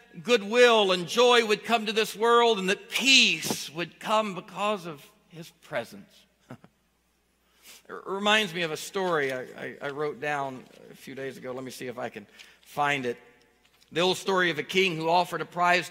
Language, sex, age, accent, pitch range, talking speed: English, male, 50-69, American, 150-190 Hz, 190 wpm